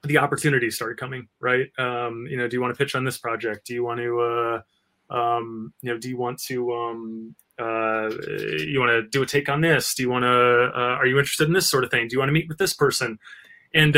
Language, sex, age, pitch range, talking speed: English, male, 20-39, 115-145 Hz, 255 wpm